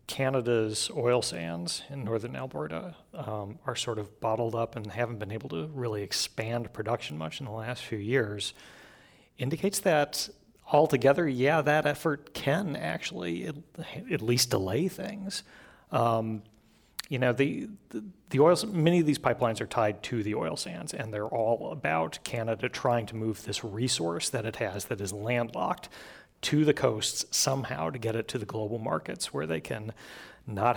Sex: male